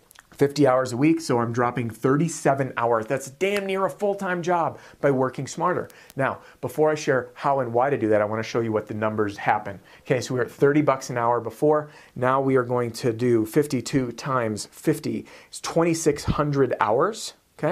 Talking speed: 195 wpm